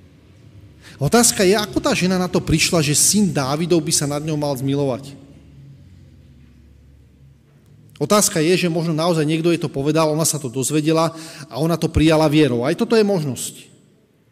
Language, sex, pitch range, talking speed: Slovak, male, 135-185 Hz, 165 wpm